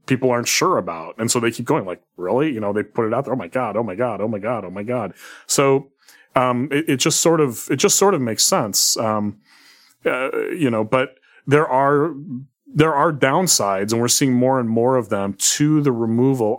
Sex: male